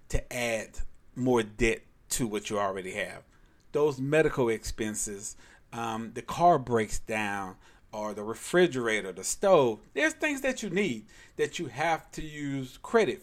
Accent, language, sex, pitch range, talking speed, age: American, English, male, 115-175 Hz, 150 wpm, 40-59